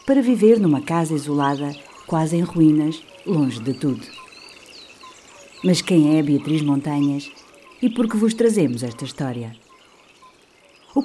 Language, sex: Portuguese, female